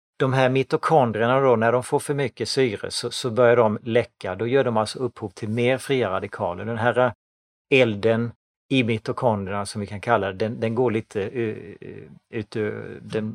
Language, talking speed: Swedish, 185 wpm